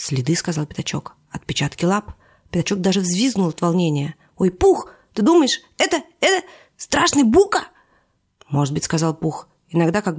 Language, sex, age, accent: Russian, female, 30-49, native